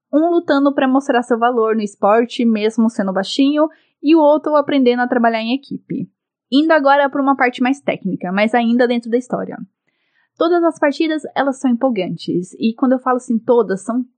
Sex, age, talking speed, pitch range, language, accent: female, 10-29, 185 wpm, 220-285 Hz, Portuguese, Brazilian